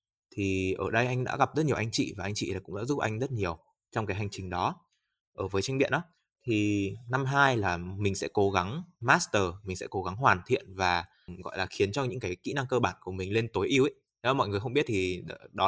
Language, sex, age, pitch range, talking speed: Vietnamese, male, 20-39, 100-130 Hz, 255 wpm